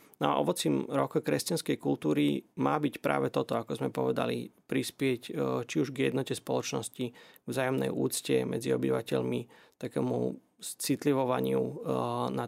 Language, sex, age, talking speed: Slovak, male, 30-49, 125 wpm